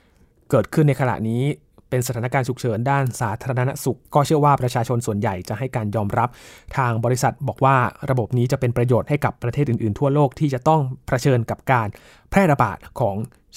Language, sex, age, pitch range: Thai, male, 20-39, 115-140 Hz